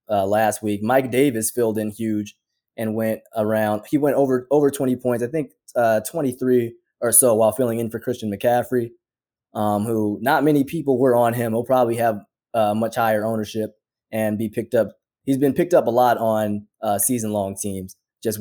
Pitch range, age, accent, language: 110-125 Hz, 20-39, American, English